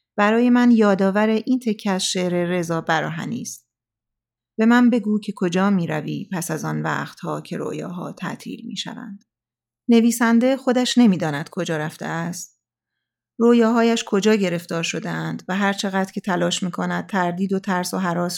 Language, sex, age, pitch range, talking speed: Persian, female, 30-49, 170-210 Hz, 155 wpm